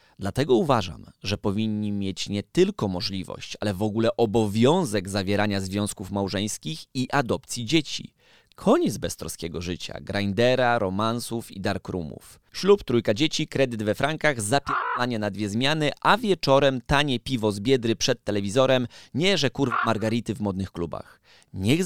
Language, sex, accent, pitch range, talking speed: Polish, male, native, 100-125 Hz, 140 wpm